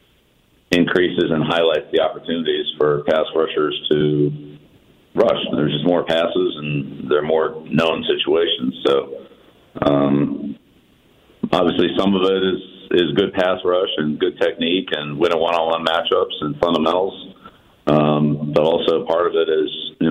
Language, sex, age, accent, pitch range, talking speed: English, male, 50-69, American, 75-95 Hz, 140 wpm